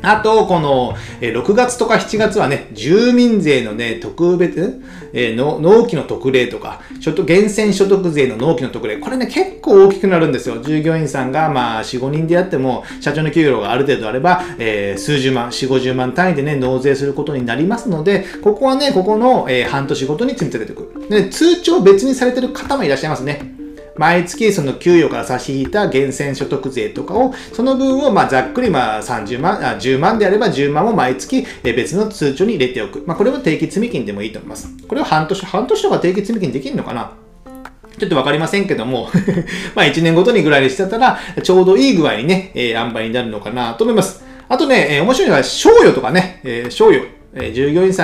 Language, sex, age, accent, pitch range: Japanese, male, 40-59, native, 135-215 Hz